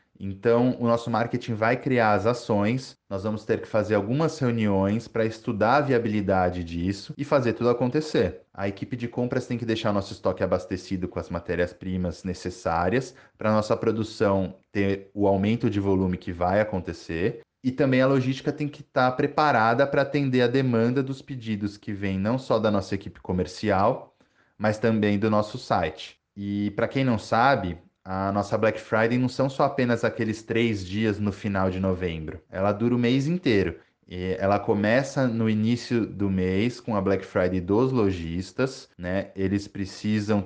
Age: 20-39